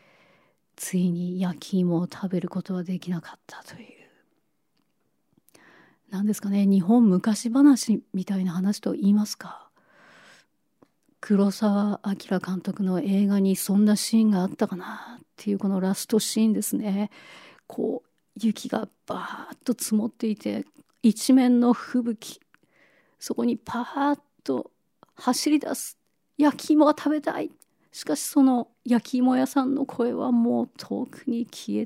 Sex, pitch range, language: female, 185-240 Hz, Japanese